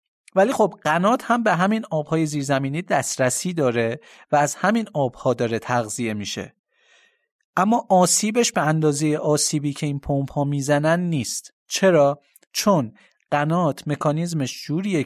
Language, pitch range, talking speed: Persian, 125-175 Hz, 130 wpm